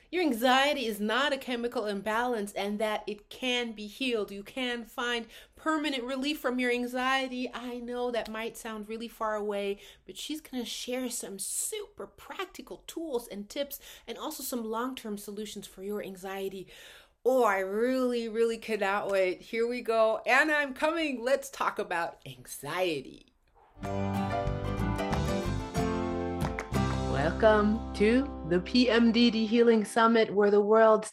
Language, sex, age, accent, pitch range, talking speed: English, female, 30-49, American, 200-245 Hz, 140 wpm